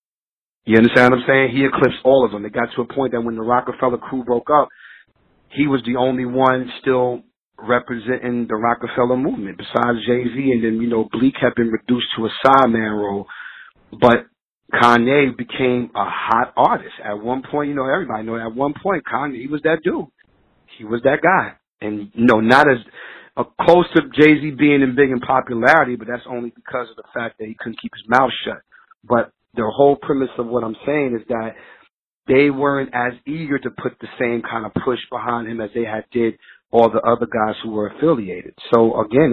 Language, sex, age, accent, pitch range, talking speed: English, male, 40-59, American, 115-140 Hz, 205 wpm